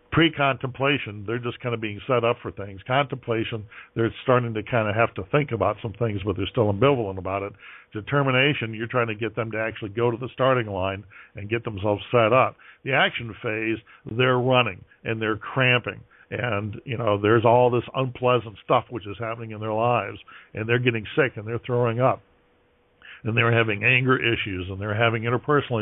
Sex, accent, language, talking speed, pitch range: male, American, English, 200 wpm, 105-125 Hz